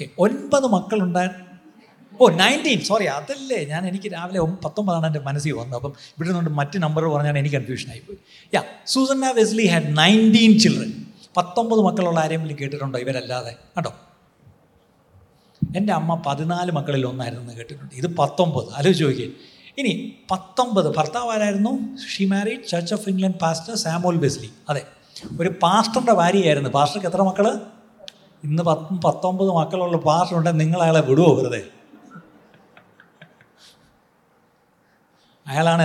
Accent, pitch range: native, 150-205 Hz